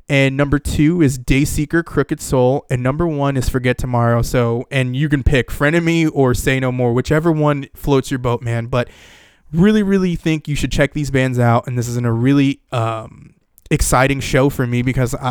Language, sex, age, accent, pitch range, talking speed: English, male, 20-39, American, 125-155 Hz, 200 wpm